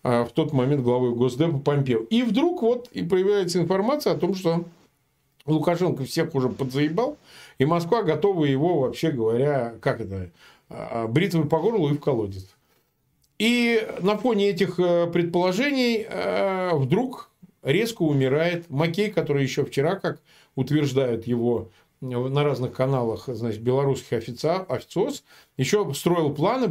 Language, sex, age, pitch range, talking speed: Russian, male, 40-59, 125-180 Hz, 130 wpm